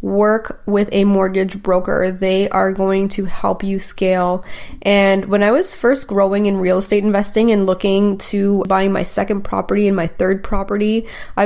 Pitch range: 185-210 Hz